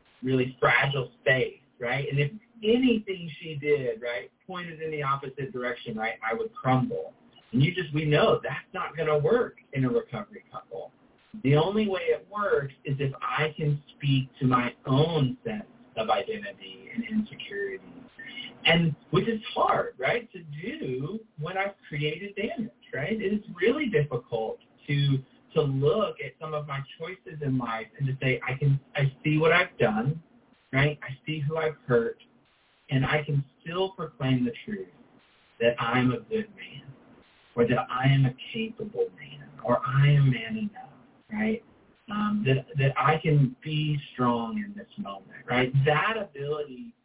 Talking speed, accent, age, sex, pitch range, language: 165 wpm, American, 30-49, male, 130-205 Hz, English